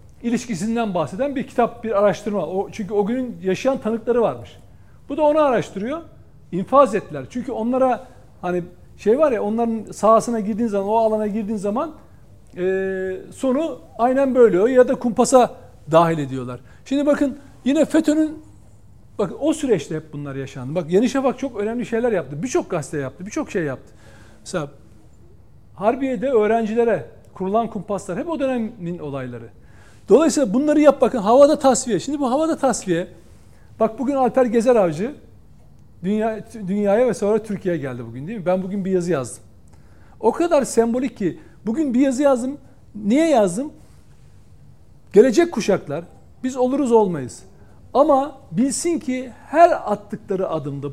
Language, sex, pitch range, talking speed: Turkish, male, 180-260 Hz, 145 wpm